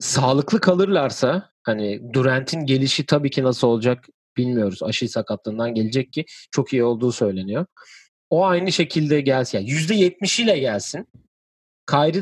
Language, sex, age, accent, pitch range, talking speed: Turkish, male, 40-59, native, 120-155 Hz, 135 wpm